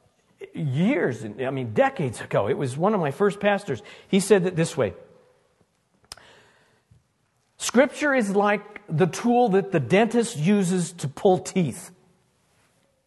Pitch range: 155-235 Hz